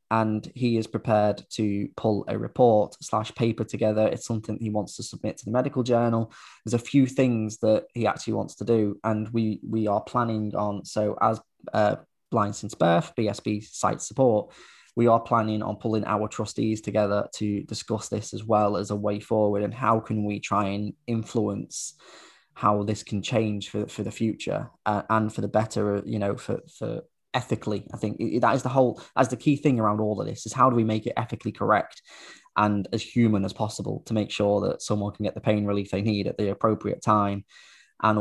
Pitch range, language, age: 105-115 Hz, English, 10-29